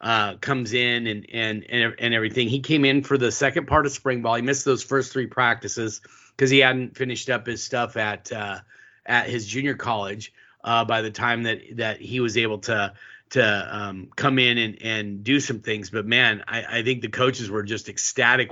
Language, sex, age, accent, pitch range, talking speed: English, male, 30-49, American, 110-130 Hz, 210 wpm